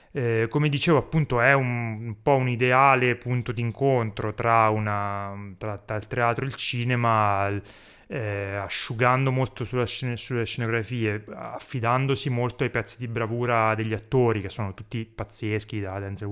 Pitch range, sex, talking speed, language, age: 110-135 Hz, male, 145 wpm, Italian, 30-49